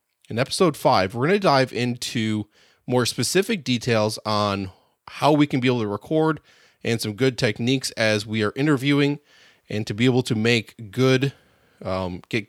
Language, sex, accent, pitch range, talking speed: English, male, American, 105-140 Hz, 175 wpm